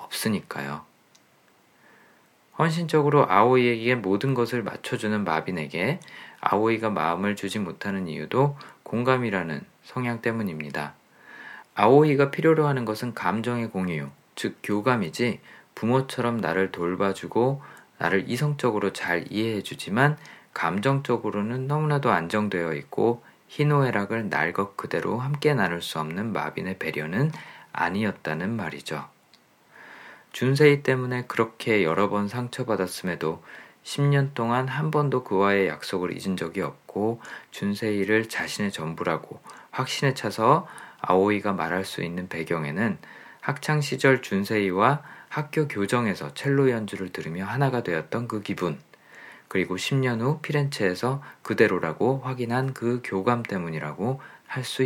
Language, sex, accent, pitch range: Korean, male, native, 100-130 Hz